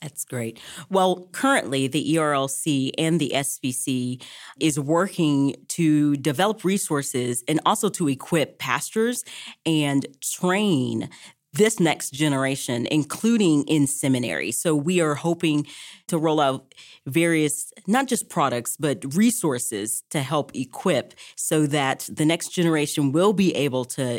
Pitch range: 140-195 Hz